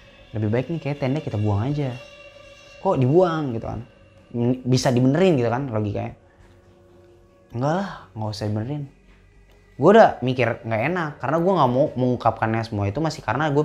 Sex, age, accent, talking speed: male, 20-39, native, 165 wpm